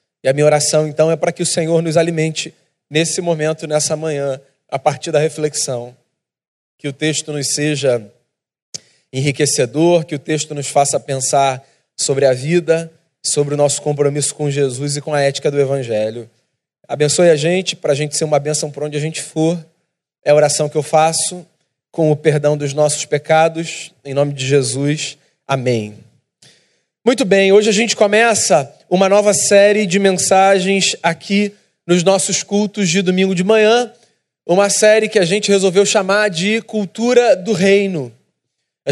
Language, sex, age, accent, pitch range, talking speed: Portuguese, male, 20-39, Brazilian, 150-200 Hz, 170 wpm